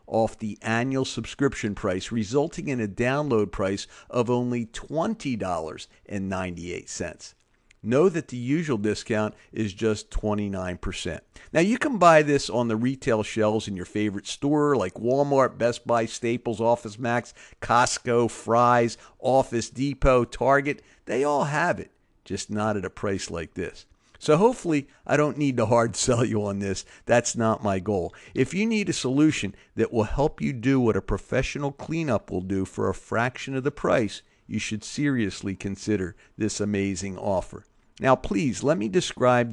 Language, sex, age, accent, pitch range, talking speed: English, male, 50-69, American, 105-135 Hz, 160 wpm